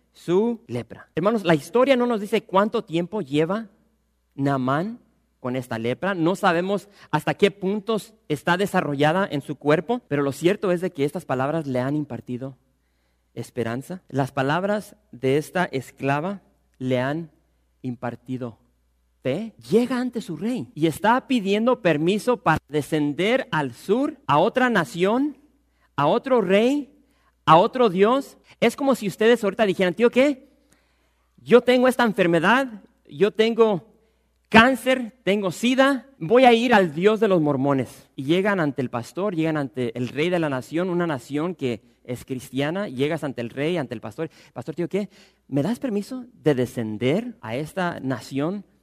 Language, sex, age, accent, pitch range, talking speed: English, male, 40-59, Mexican, 140-225 Hz, 155 wpm